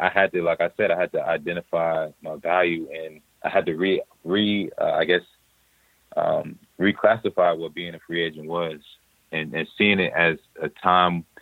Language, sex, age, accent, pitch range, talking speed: English, male, 30-49, American, 80-90 Hz, 190 wpm